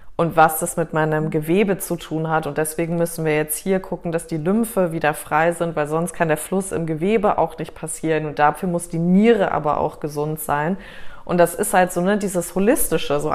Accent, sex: German, female